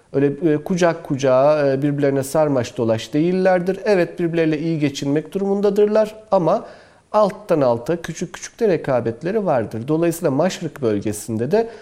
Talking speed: 120 wpm